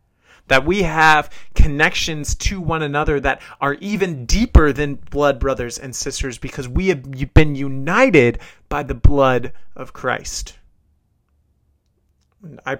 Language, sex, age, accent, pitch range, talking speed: English, male, 30-49, American, 115-140 Hz, 125 wpm